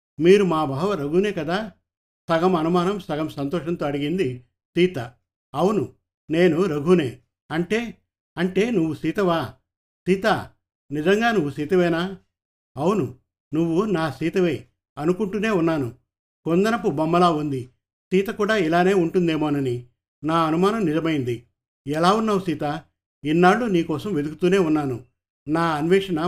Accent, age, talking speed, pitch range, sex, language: native, 50-69, 105 wpm, 135-185 Hz, male, Telugu